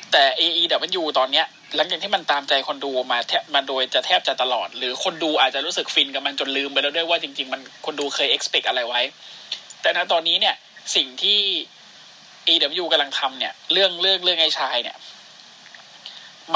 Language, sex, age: Thai, male, 20-39